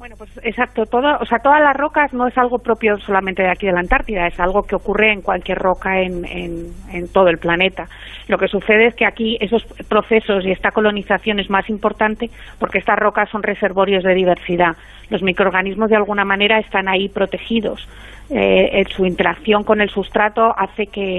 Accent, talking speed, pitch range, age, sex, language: Spanish, 195 wpm, 185-215 Hz, 40-59, female, Spanish